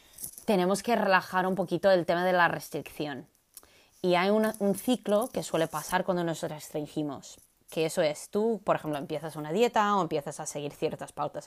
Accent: Spanish